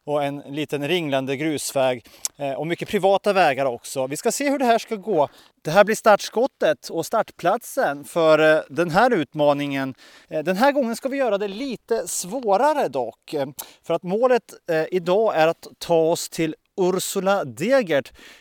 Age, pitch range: 30-49, 155-220 Hz